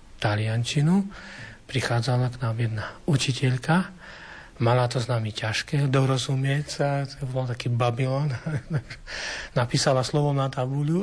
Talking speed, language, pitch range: 110 wpm, Slovak, 120-140 Hz